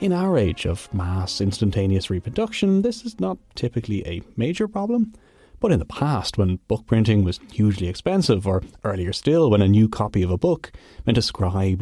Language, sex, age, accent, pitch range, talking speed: English, male, 30-49, Irish, 95-140 Hz, 190 wpm